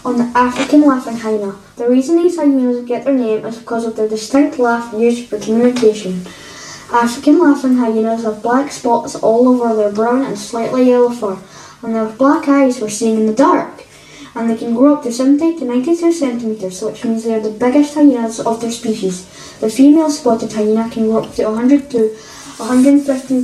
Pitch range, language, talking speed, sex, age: 225-275 Hz, English, 190 wpm, female, 10-29